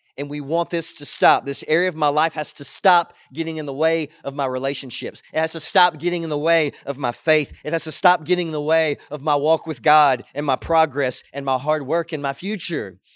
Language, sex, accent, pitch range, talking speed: English, male, American, 140-165 Hz, 250 wpm